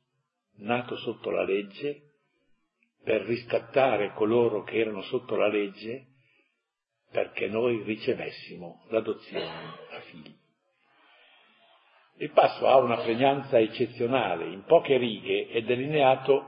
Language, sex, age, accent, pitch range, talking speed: Italian, male, 60-79, native, 110-130 Hz, 105 wpm